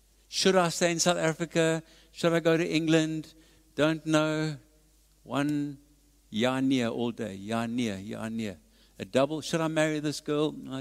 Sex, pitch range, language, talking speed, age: male, 110-150 Hz, English, 165 wpm, 60-79